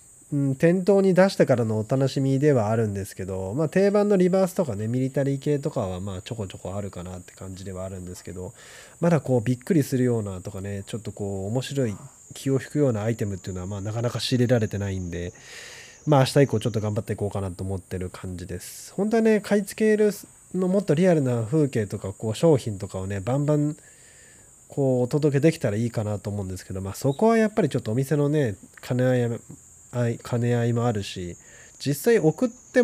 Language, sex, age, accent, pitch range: Japanese, male, 20-39, native, 100-150 Hz